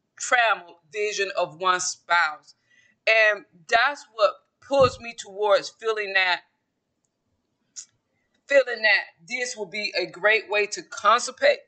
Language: English